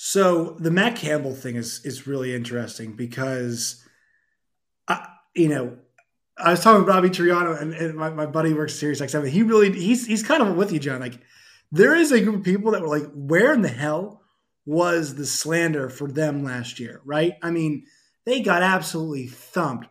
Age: 20-39